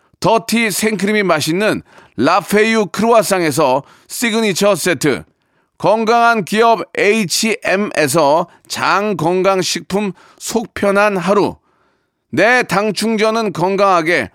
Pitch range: 180-235 Hz